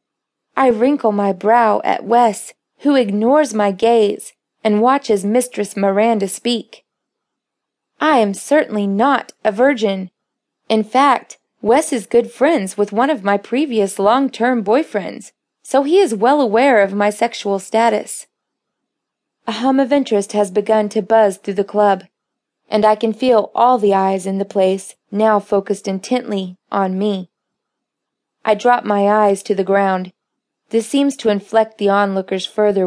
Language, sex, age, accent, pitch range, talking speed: English, female, 20-39, American, 200-245 Hz, 150 wpm